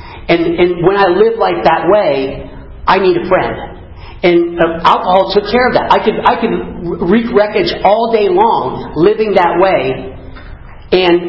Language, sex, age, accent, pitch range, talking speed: English, male, 40-59, American, 155-190 Hz, 170 wpm